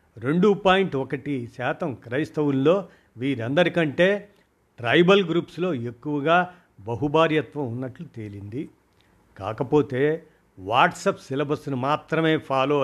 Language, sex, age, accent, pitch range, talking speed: Telugu, male, 50-69, native, 130-170 Hz, 80 wpm